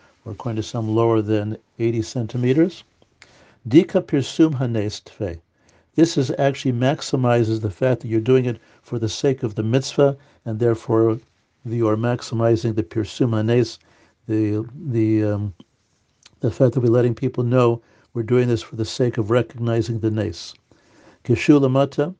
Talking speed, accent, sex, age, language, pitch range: 140 wpm, American, male, 60-79, English, 110-135 Hz